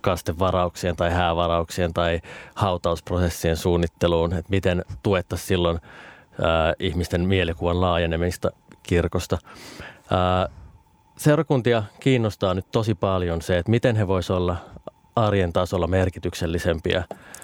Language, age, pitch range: Finnish, 30-49, 90-115 Hz